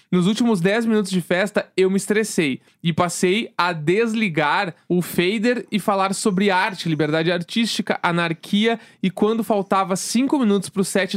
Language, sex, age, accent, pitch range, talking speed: Portuguese, male, 20-39, Brazilian, 180-220 Hz, 160 wpm